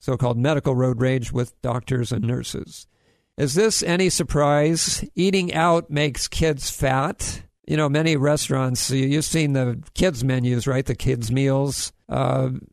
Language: English